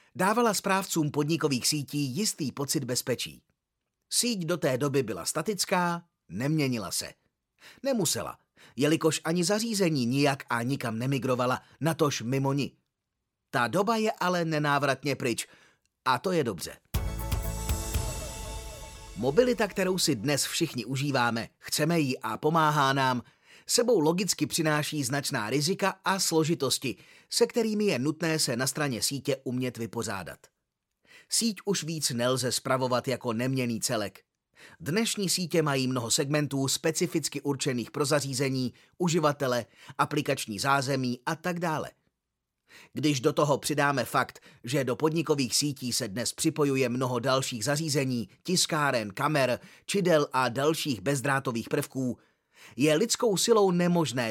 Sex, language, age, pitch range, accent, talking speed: male, Czech, 30-49, 130-165 Hz, native, 125 wpm